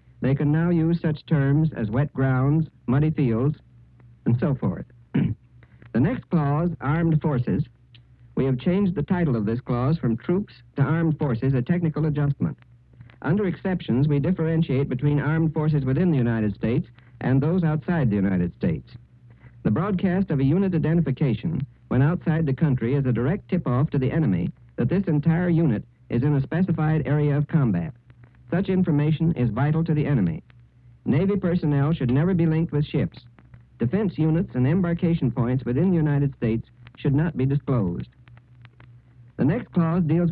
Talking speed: 165 wpm